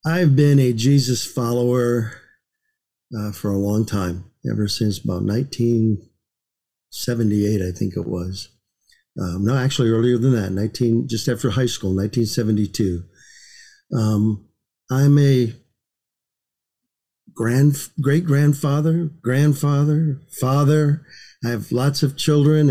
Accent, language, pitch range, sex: American, English, 110-140 Hz, male